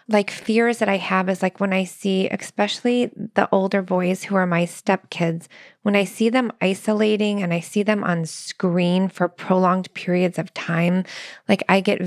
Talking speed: 185 wpm